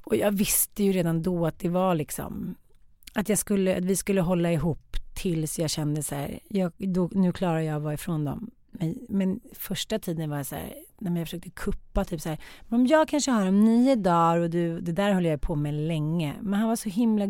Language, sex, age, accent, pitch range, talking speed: English, female, 30-49, Swedish, 160-200 Hz, 230 wpm